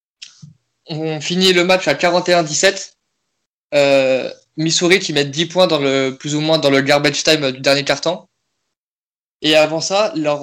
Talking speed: 160 wpm